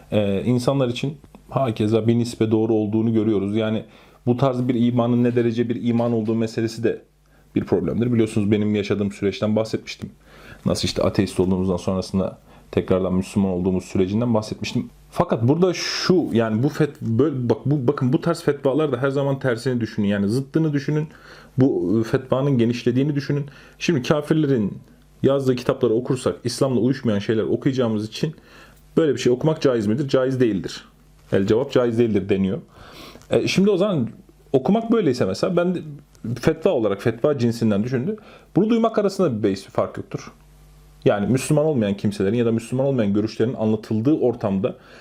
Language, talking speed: Turkish, 155 wpm